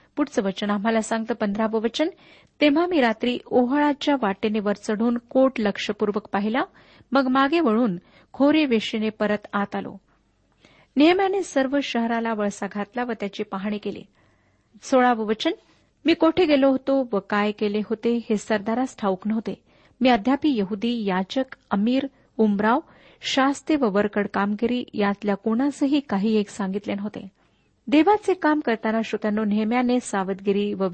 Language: Marathi